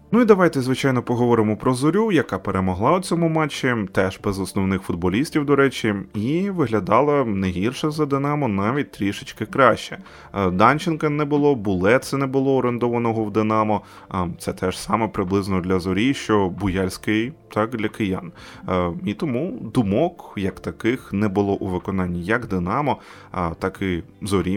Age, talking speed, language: 20-39, 150 wpm, Ukrainian